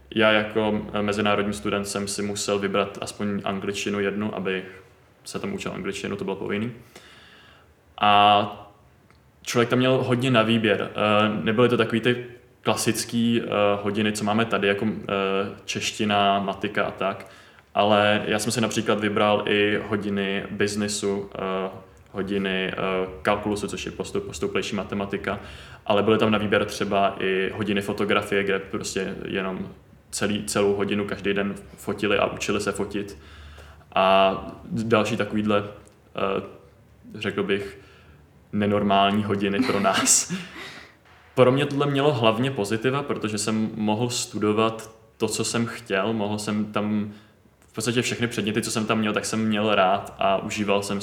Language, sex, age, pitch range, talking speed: Czech, male, 20-39, 100-110 Hz, 140 wpm